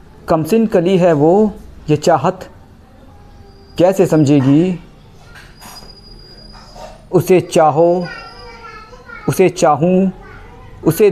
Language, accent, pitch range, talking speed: Hindi, native, 150-190 Hz, 70 wpm